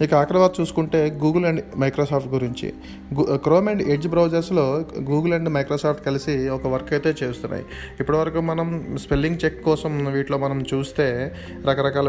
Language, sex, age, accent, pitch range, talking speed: Telugu, male, 30-49, native, 135-155 Hz, 150 wpm